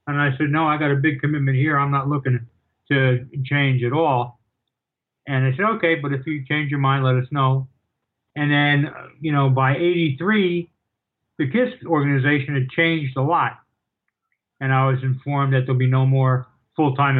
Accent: American